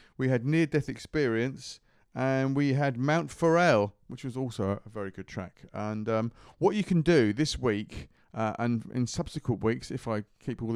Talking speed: 190 wpm